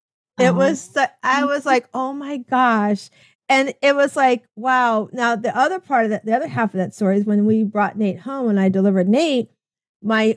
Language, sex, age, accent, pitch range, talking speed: English, female, 40-59, American, 210-260 Hz, 210 wpm